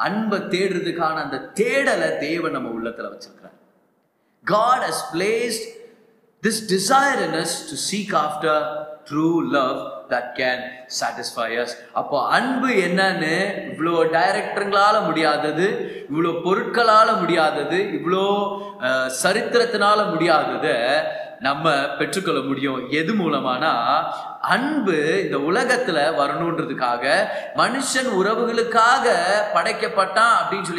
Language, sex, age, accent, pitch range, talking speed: Tamil, male, 30-49, native, 160-230 Hz, 50 wpm